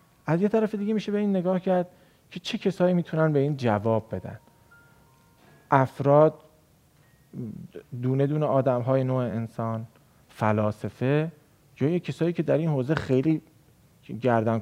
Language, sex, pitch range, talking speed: Persian, male, 115-155 Hz, 130 wpm